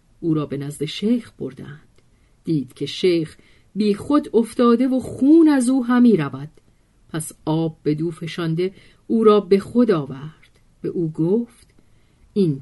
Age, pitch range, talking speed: 50-69, 165-235 Hz, 150 wpm